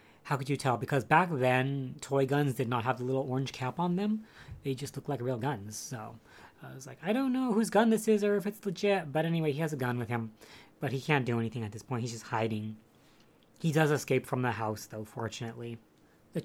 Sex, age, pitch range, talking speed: female, 30-49, 115-145 Hz, 245 wpm